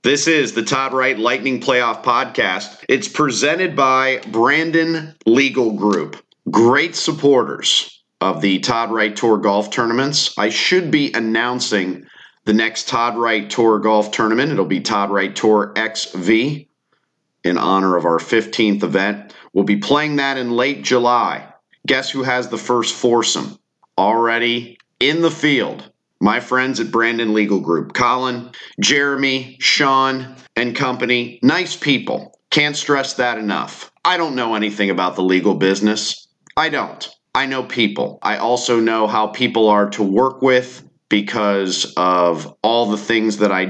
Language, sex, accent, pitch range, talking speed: English, male, American, 105-130 Hz, 150 wpm